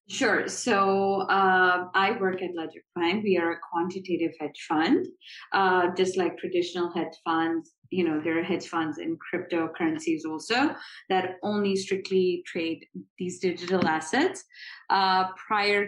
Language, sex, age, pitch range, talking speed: English, female, 20-39, 175-205 Hz, 145 wpm